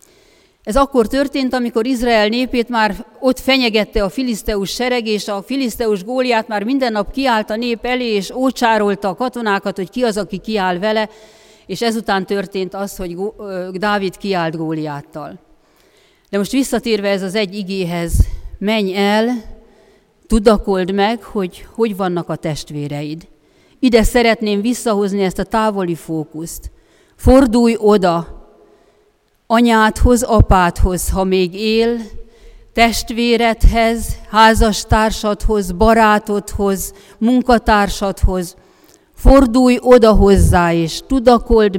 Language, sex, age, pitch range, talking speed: Hungarian, female, 40-59, 190-235 Hz, 115 wpm